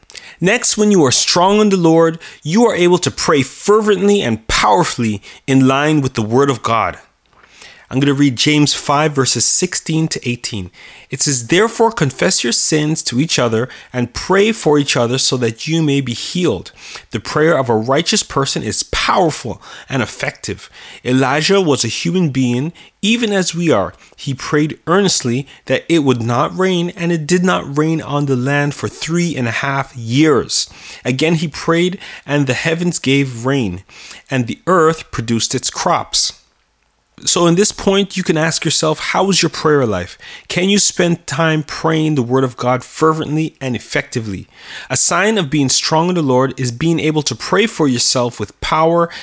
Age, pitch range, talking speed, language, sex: 30-49, 130-170 Hz, 185 wpm, English, male